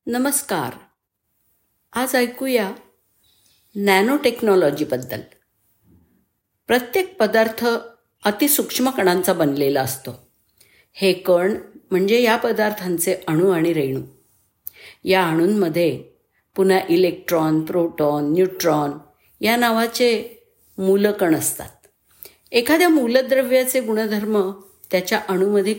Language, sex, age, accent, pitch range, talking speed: Marathi, female, 50-69, native, 165-235 Hz, 75 wpm